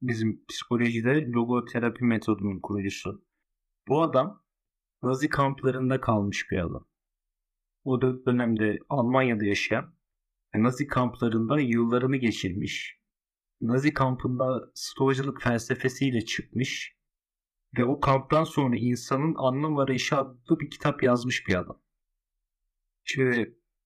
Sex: male